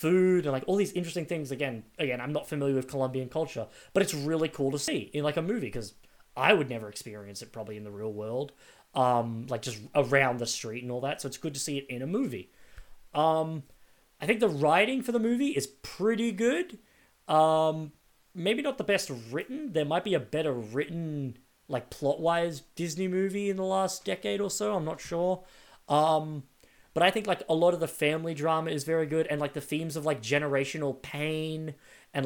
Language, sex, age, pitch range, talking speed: English, male, 20-39, 135-175 Hz, 210 wpm